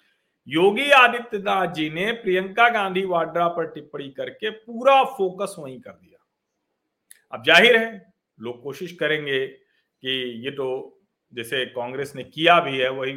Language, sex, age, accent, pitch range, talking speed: Hindi, male, 50-69, native, 150-220 Hz, 140 wpm